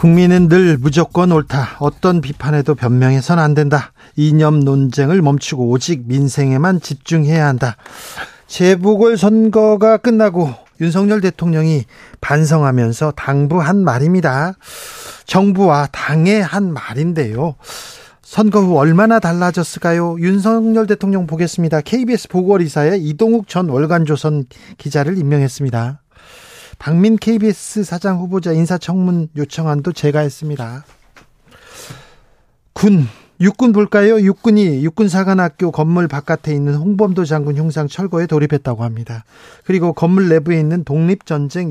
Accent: native